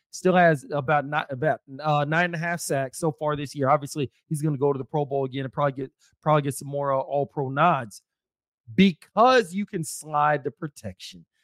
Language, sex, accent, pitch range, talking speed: English, male, American, 140-170 Hz, 220 wpm